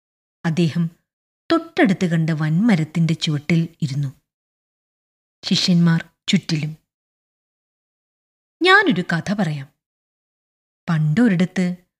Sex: female